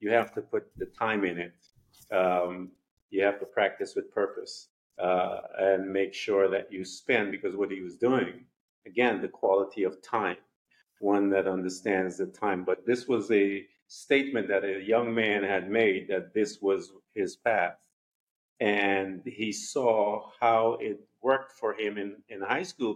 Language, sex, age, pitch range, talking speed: English, male, 50-69, 90-105 Hz, 170 wpm